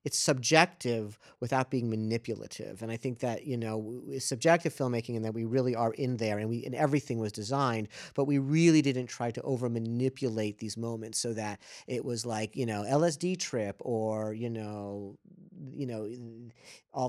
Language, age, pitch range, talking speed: English, 40-59, 115-150 Hz, 180 wpm